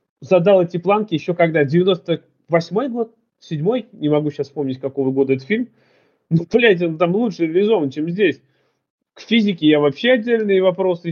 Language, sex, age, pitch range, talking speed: Russian, male, 20-39, 145-195 Hz, 160 wpm